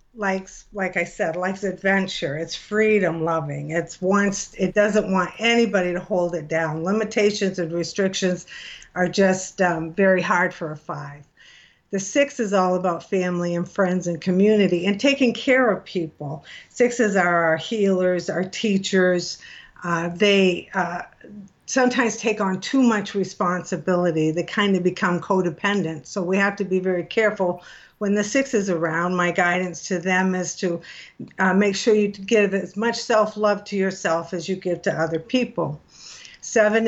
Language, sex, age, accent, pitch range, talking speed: English, female, 50-69, American, 175-205 Hz, 160 wpm